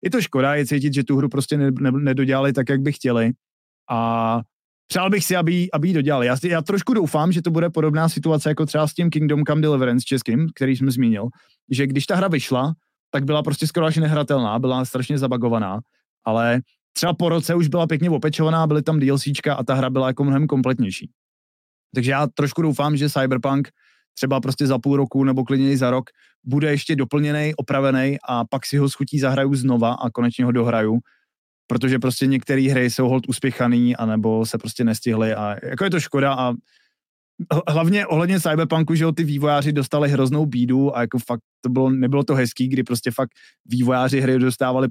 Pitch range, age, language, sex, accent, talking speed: 125-150 Hz, 20-39, Czech, male, native, 195 wpm